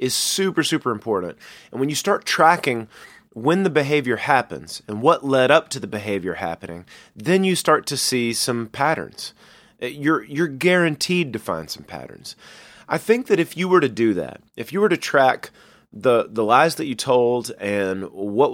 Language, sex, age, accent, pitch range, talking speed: English, male, 30-49, American, 105-150 Hz, 185 wpm